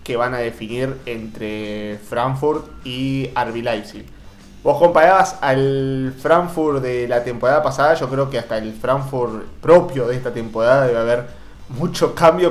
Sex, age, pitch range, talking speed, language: male, 20-39, 115-145 Hz, 150 wpm, Spanish